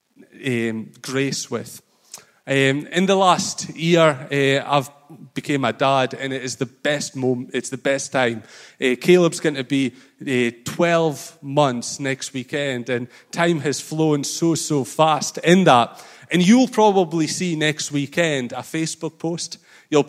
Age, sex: 30-49, male